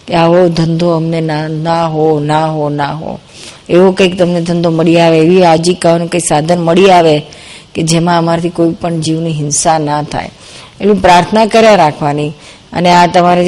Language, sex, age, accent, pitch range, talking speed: Gujarati, female, 50-69, native, 165-185 Hz, 75 wpm